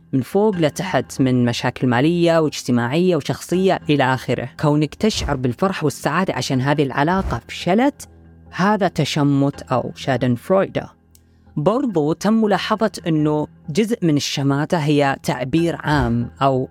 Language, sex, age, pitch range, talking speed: Arabic, female, 20-39, 135-180 Hz, 120 wpm